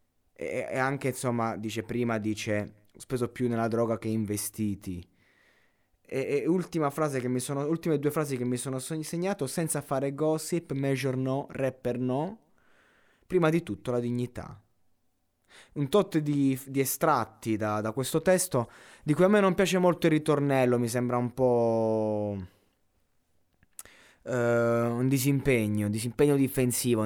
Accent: native